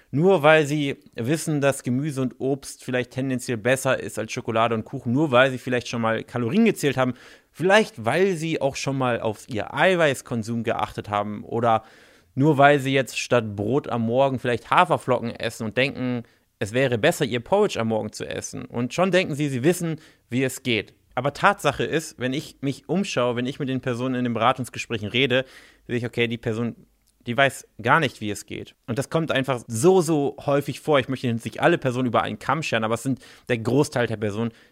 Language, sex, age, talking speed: German, male, 30-49, 205 wpm